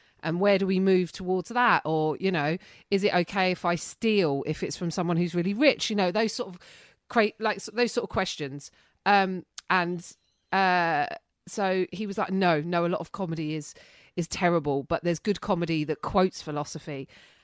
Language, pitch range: English, 165-200 Hz